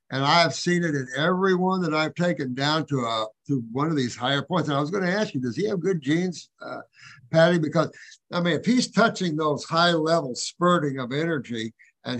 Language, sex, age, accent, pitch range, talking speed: English, male, 60-79, American, 140-175 Hz, 210 wpm